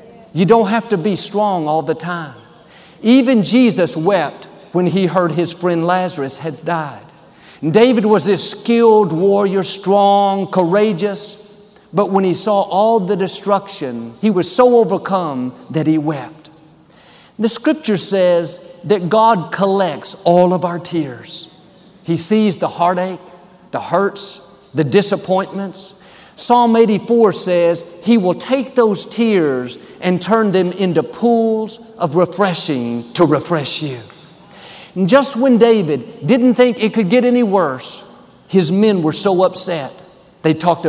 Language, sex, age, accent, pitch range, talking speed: English, male, 50-69, American, 170-215 Hz, 140 wpm